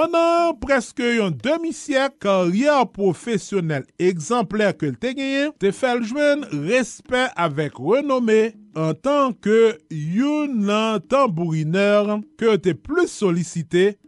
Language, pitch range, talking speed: French, 175-260 Hz, 115 wpm